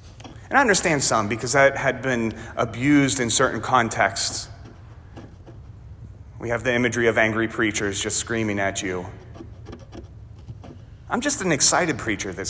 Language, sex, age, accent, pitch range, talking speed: English, male, 30-49, American, 105-150 Hz, 140 wpm